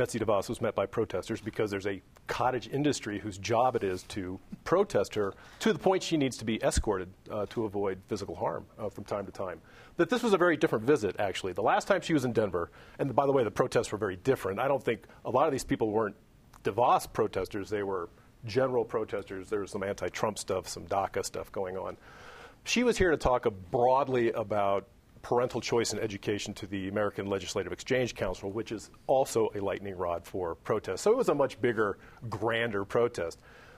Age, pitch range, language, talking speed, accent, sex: 40-59, 105-130 Hz, English, 210 wpm, American, male